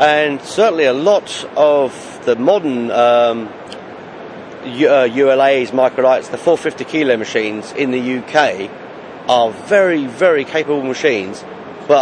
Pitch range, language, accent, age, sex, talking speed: 125-150 Hz, English, British, 40-59, male, 120 wpm